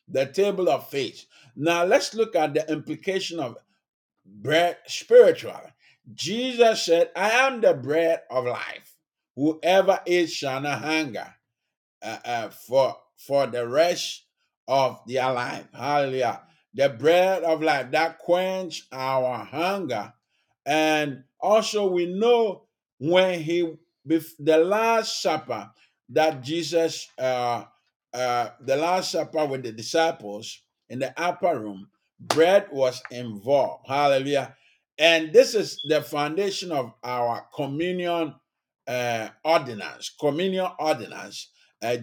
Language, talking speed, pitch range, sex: English, 125 wpm, 130-175 Hz, male